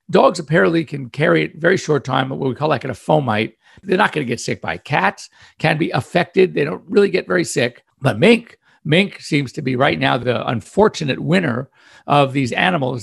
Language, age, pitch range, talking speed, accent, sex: English, 50-69, 125-165 Hz, 210 wpm, American, male